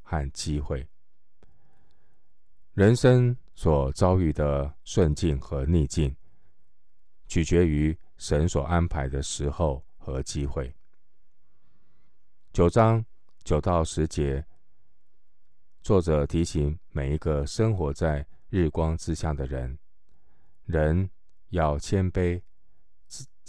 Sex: male